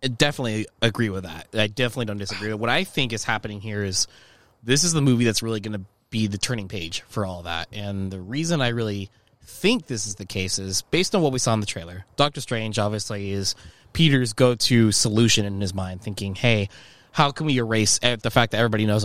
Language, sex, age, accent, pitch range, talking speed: English, male, 20-39, American, 105-130 Hz, 225 wpm